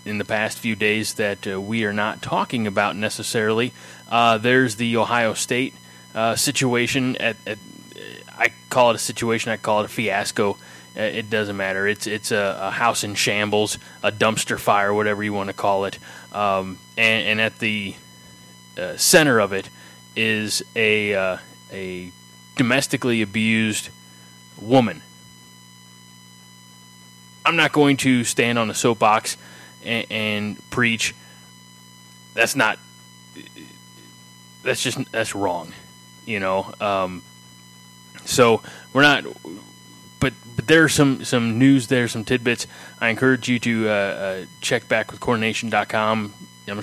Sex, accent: male, American